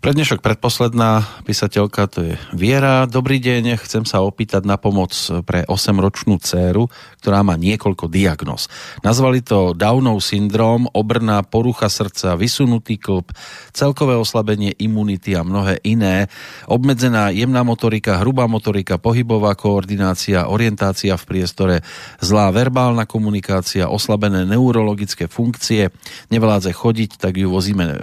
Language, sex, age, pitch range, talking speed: Slovak, male, 40-59, 95-115 Hz, 120 wpm